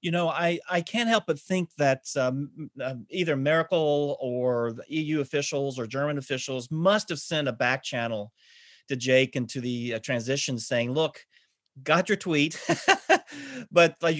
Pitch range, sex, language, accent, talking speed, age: 140-190 Hz, male, English, American, 170 wpm, 40-59